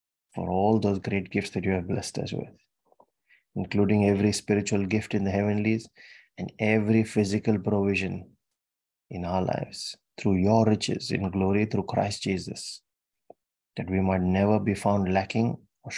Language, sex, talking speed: English, male, 155 wpm